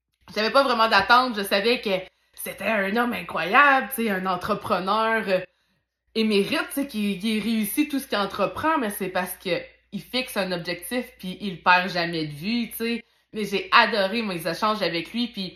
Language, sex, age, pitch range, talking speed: French, female, 20-39, 190-245 Hz, 195 wpm